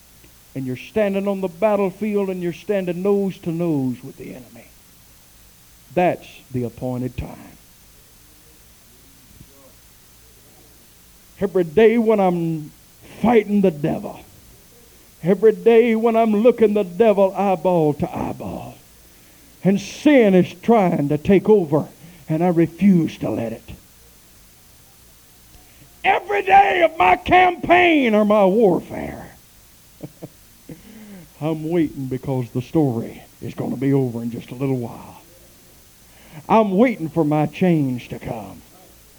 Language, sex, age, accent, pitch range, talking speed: English, male, 60-79, American, 150-215 Hz, 120 wpm